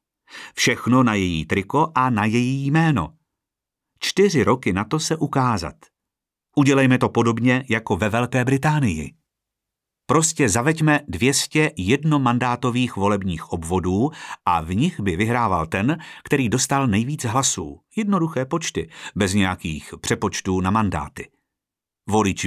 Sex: male